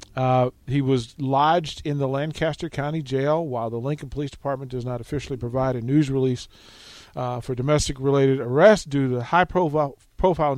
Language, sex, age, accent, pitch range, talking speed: English, male, 50-69, American, 125-150 Hz, 180 wpm